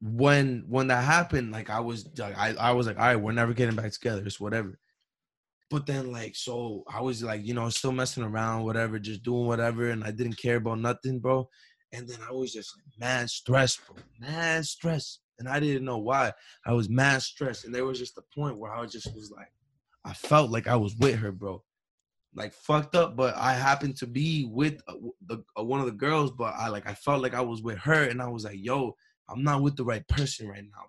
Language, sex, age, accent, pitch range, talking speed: English, male, 20-39, American, 115-135 Hz, 235 wpm